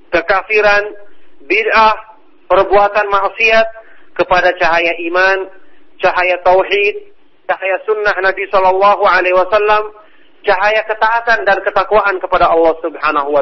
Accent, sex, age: Indonesian, male, 40-59